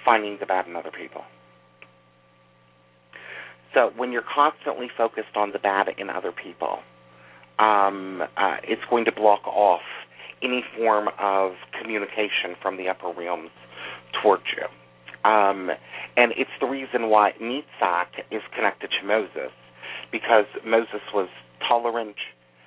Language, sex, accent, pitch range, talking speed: English, male, American, 95-130 Hz, 130 wpm